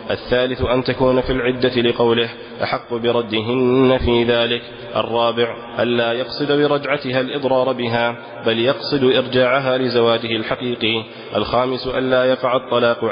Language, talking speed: Arabic, 115 wpm